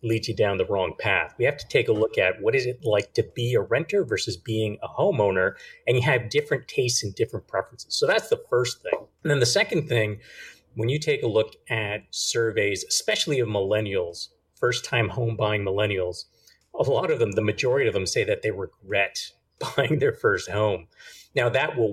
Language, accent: English, American